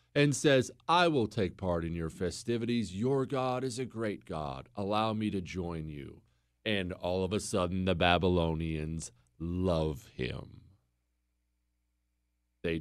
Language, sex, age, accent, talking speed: English, male, 40-59, American, 140 wpm